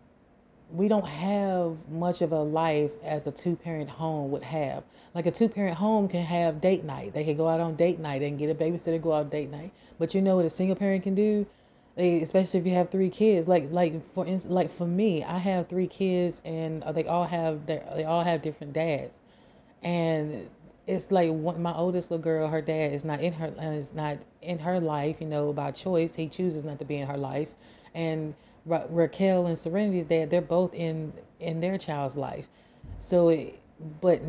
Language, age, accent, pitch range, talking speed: English, 30-49, American, 155-175 Hz, 205 wpm